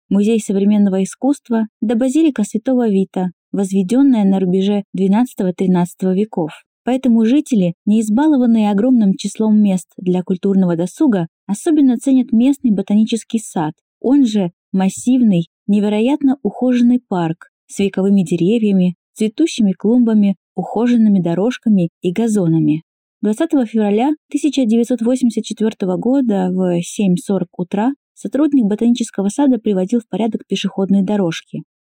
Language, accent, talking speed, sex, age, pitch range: Russian, native, 105 wpm, female, 20-39, 190-245 Hz